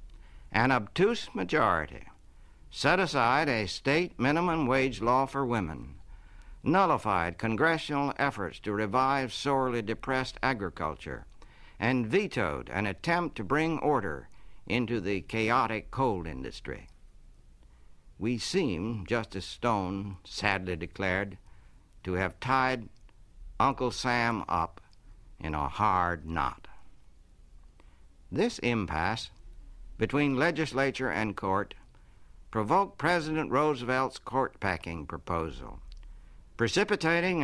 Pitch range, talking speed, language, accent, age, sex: 90-130 Hz, 95 wpm, English, American, 60-79, male